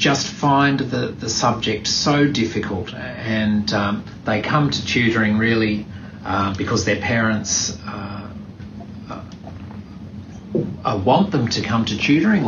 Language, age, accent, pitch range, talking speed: English, 40-59, Australian, 105-120 Hz, 125 wpm